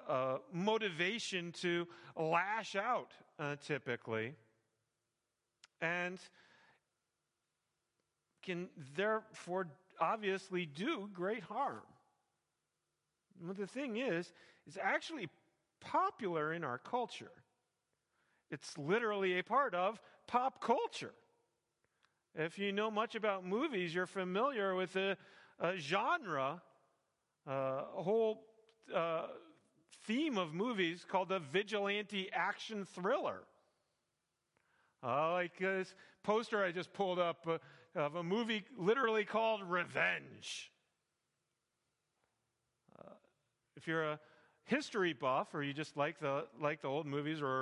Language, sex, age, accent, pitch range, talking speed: English, male, 40-59, American, 150-205 Hz, 110 wpm